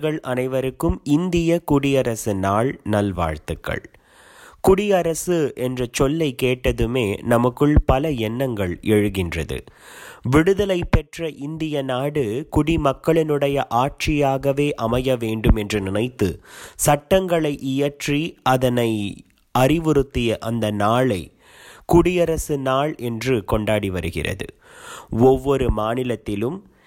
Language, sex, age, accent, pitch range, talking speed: Tamil, male, 30-49, native, 115-150 Hz, 80 wpm